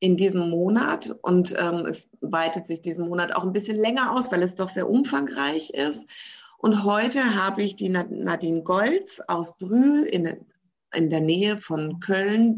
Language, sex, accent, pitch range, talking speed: German, female, German, 175-235 Hz, 170 wpm